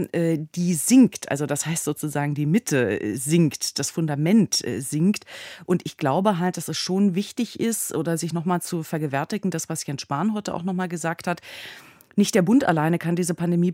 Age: 30-49